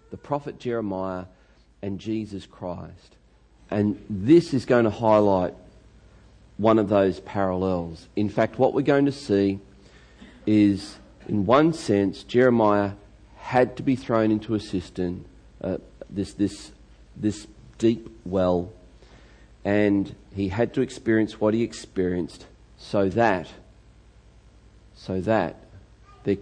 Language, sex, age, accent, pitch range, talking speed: English, male, 40-59, Australian, 95-115 Hz, 125 wpm